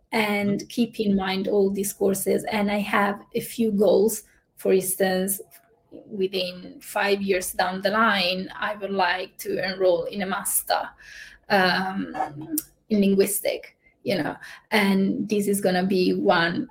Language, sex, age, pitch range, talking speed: English, female, 20-39, 190-220 Hz, 145 wpm